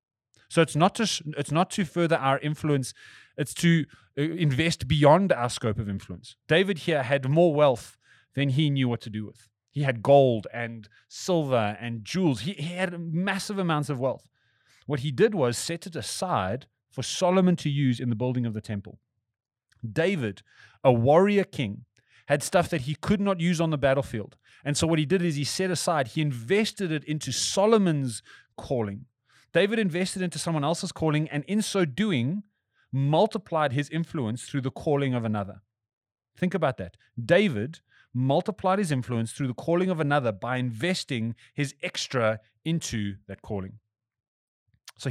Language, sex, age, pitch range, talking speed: English, male, 30-49, 115-170 Hz, 170 wpm